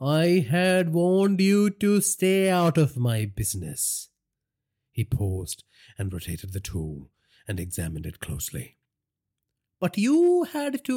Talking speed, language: 130 wpm, English